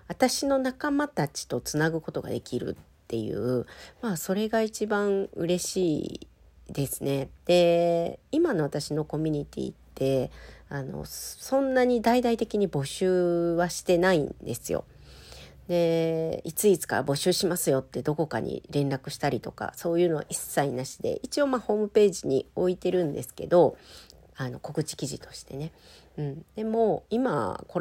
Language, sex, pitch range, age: Japanese, female, 140-210 Hz, 40-59